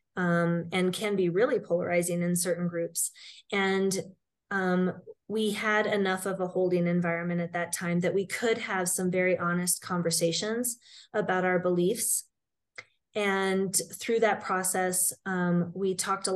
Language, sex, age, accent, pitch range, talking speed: English, female, 20-39, American, 175-200 Hz, 145 wpm